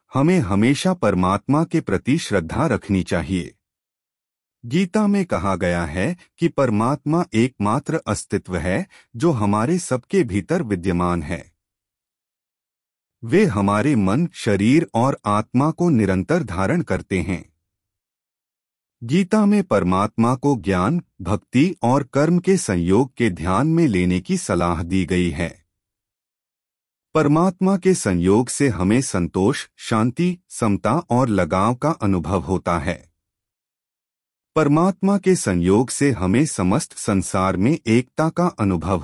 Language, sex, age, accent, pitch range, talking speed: Hindi, male, 30-49, native, 90-145 Hz, 120 wpm